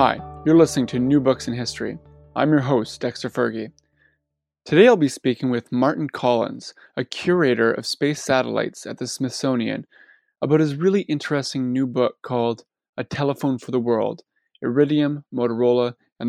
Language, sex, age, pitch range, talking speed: English, male, 20-39, 120-145 Hz, 160 wpm